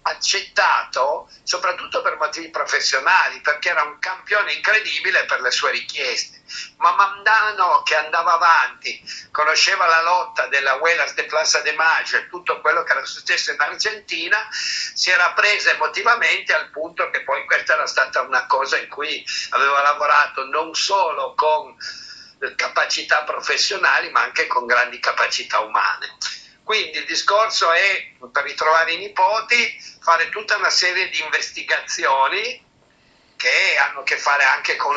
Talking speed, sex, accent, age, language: 145 wpm, male, native, 50-69, Italian